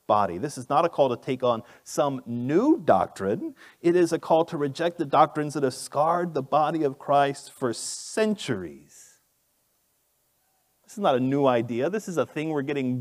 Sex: male